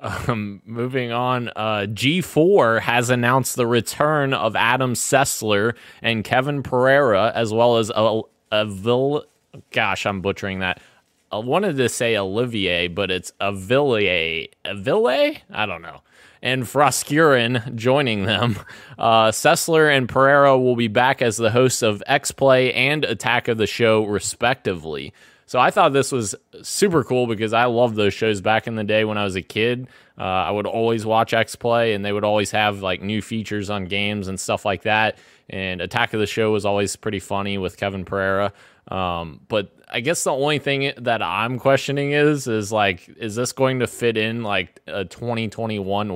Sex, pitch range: male, 100-125 Hz